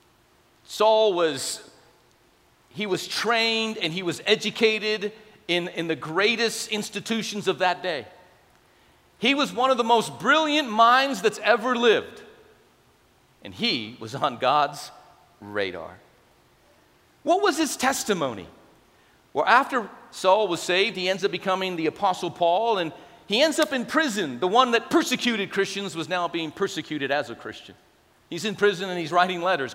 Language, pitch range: English, 180-255 Hz